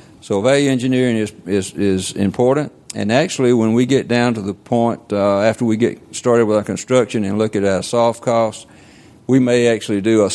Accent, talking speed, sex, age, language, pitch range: American, 205 wpm, male, 50-69, English, 95-115 Hz